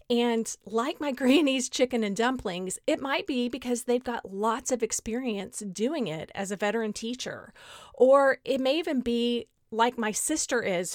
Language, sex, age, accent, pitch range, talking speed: English, female, 40-59, American, 200-255 Hz, 170 wpm